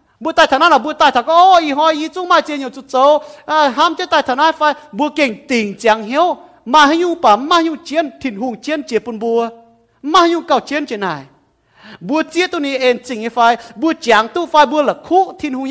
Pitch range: 235-315 Hz